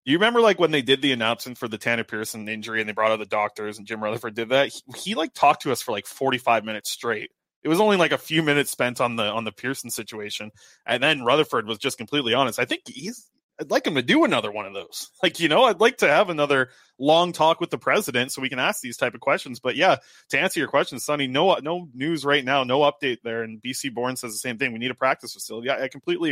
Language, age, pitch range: English, 20-39, 115-165 Hz